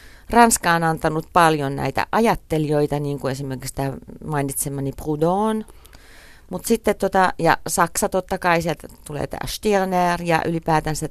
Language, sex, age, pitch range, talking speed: Finnish, female, 40-59, 145-175 Hz, 130 wpm